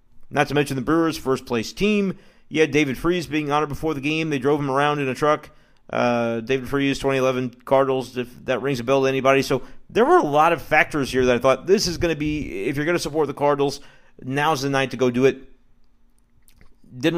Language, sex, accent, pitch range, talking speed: English, male, American, 125-150 Hz, 235 wpm